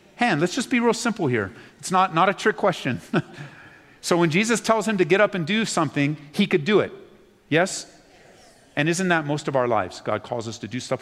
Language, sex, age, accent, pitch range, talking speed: English, male, 40-59, American, 145-215 Hz, 230 wpm